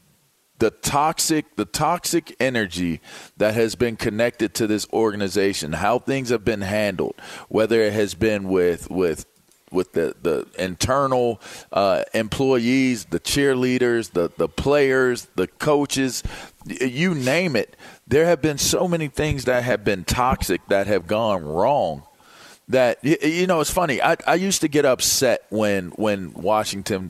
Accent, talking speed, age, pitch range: American, 150 wpm, 40-59, 105-140 Hz